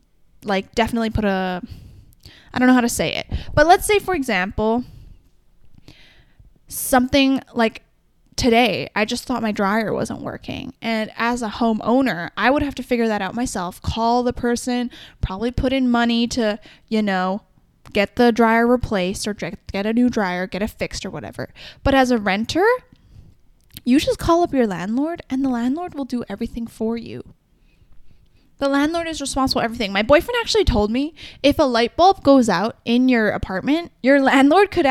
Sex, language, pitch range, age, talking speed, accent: female, English, 210-270 Hz, 10-29, 175 wpm, American